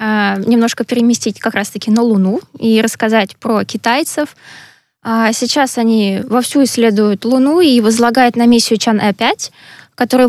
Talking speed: 130 wpm